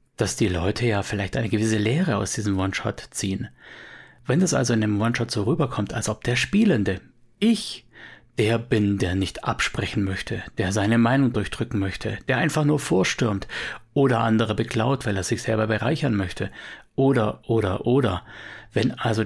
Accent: German